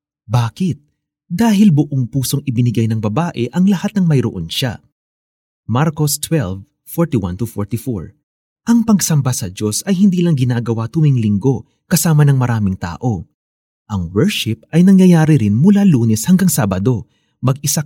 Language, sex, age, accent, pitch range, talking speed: Filipino, male, 30-49, native, 115-150 Hz, 130 wpm